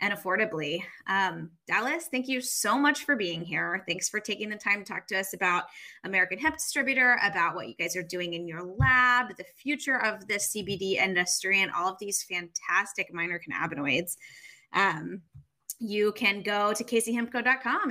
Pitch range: 185-240 Hz